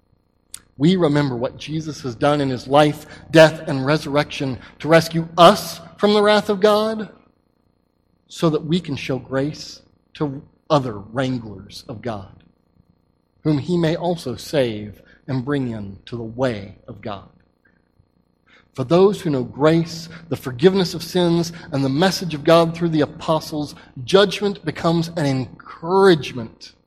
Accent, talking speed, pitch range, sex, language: American, 145 wpm, 130-190 Hz, male, English